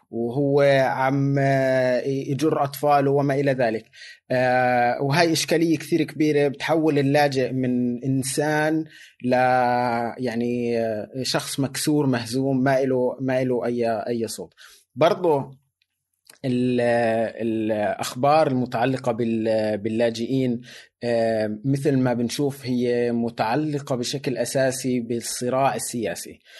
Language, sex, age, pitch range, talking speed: Arabic, male, 20-39, 120-140 Hz, 90 wpm